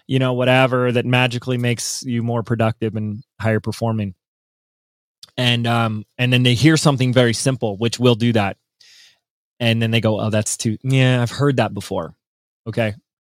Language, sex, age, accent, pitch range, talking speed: English, male, 20-39, American, 110-130 Hz, 170 wpm